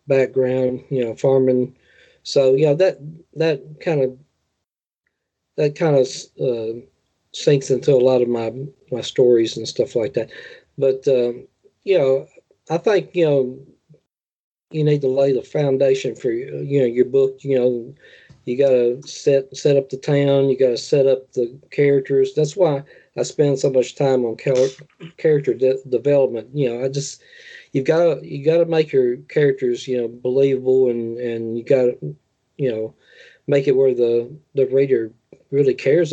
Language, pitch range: English, 125-155 Hz